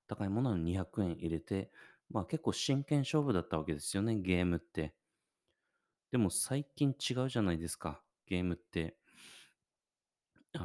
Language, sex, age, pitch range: Japanese, male, 30-49, 85-110 Hz